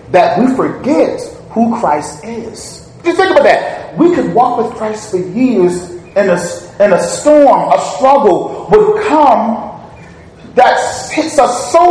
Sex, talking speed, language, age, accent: male, 140 wpm, English, 30-49, American